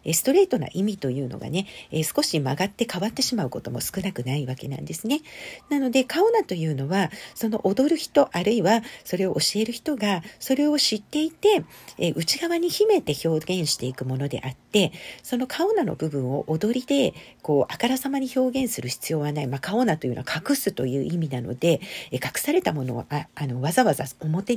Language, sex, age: Japanese, female, 50-69